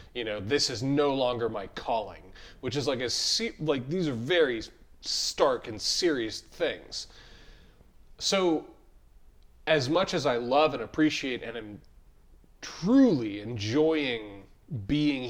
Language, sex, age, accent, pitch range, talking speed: English, male, 30-49, American, 115-155 Hz, 130 wpm